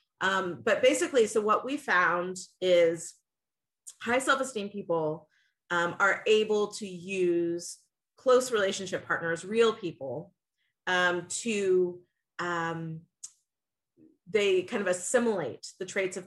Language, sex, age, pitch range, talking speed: English, female, 30-49, 175-215 Hz, 115 wpm